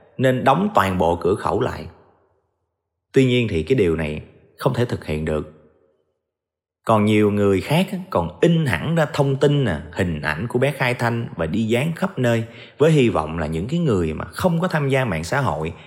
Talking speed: 210 wpm